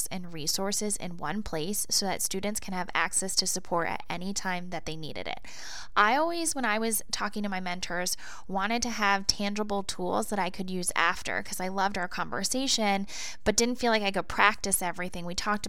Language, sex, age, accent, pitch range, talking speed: English, female, 20-39, American, 185-225 Hz, 205 wpm